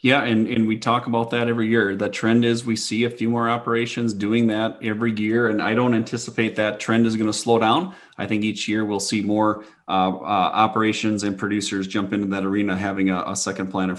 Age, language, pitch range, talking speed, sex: 30-49, English, 105-120 Hz, 230 wpm, male